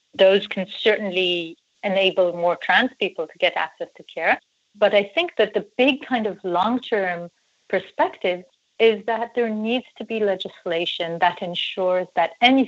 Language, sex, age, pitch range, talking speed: English, female, 40-59, 165-210 Hz, 155 wpm